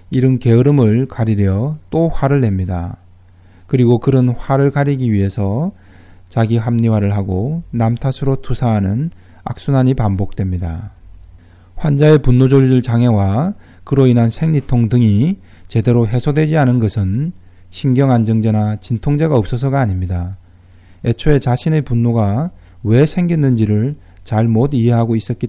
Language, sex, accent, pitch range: Korean, male, native, 95-130 Hz